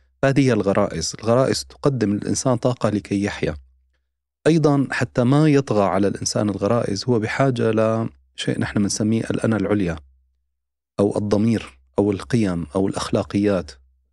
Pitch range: 80-120 Hz